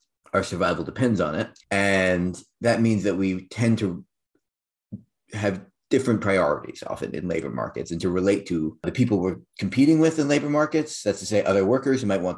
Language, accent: English, American